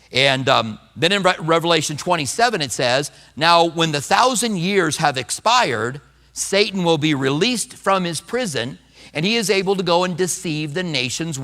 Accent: American